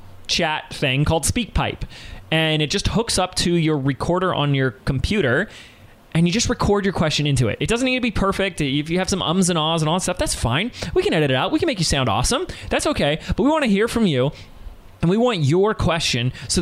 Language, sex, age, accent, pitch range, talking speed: English, male, 20-39, American, 110-160 Hz, 245 wpm